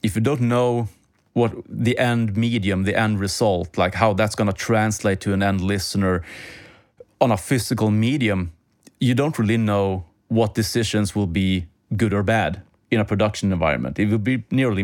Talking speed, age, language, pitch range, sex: 180 wpm, 30-49, English, 95-115 Hz, male